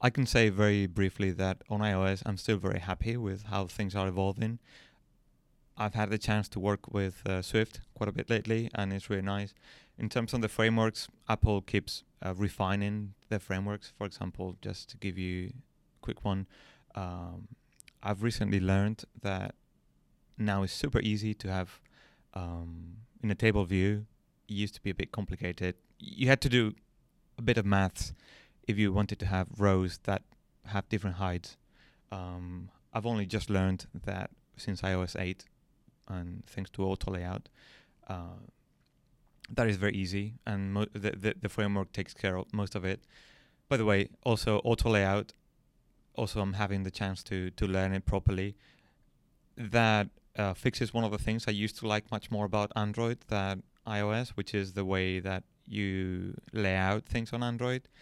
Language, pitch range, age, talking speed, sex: English, 95-110 Hz, 30-49, 175 wpm, male